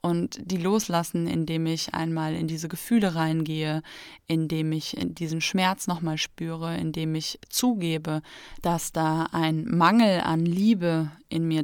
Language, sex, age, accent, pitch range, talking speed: German, female, 20-39, German, 160-185 Hz, 140 wpm